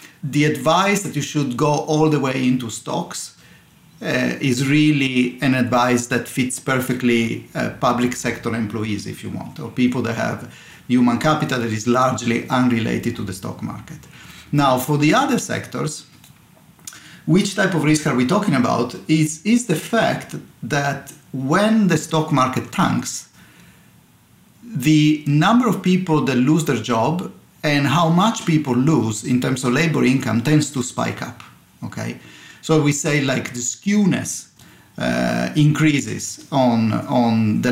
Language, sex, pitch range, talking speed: English, male, 120-150 Hz, 155 wpm